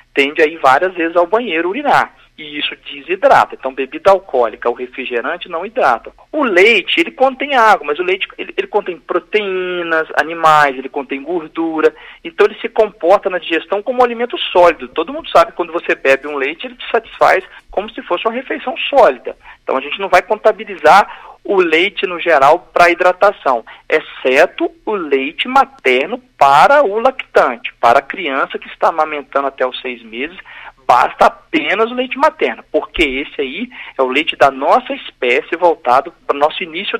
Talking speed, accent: 175 wpm, Brazilian